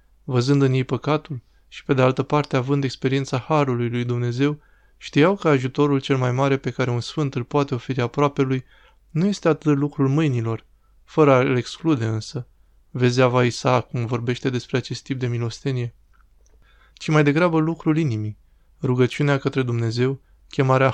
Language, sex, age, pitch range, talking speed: Romanian, male, 20-39, 125-145 Hz, 160 wpm